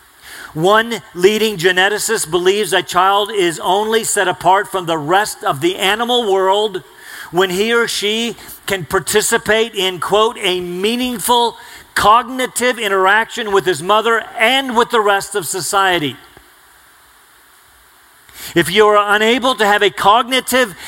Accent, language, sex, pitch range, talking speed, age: American, English, male, 160-205 Hz, 130 wpm, 40-59